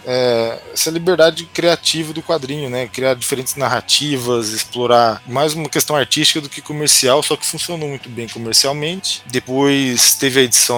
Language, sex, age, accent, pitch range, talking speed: Portuguese, male, 20-39, Brazilian, 110-140 Hz, 155 wpm